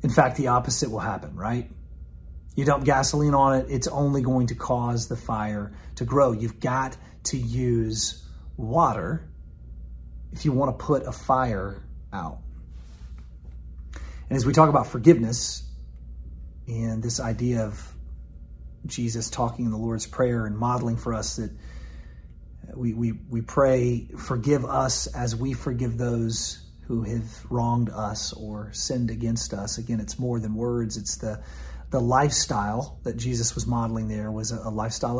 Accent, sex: American, male